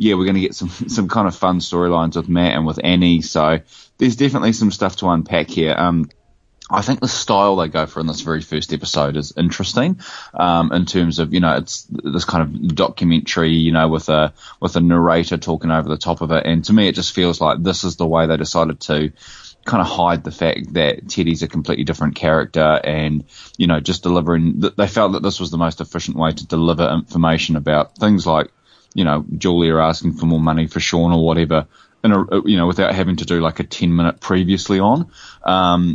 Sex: male